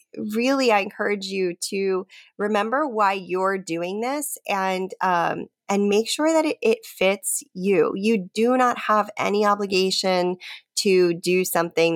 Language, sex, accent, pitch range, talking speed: English, female, American, 165-210 Hz, 145 wpm